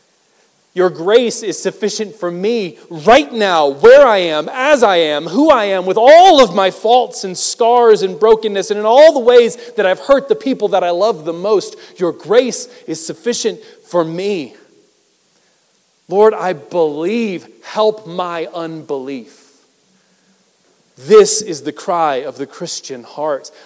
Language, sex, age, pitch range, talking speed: English, male, 40-59, 165-230 Hz, 155 wpm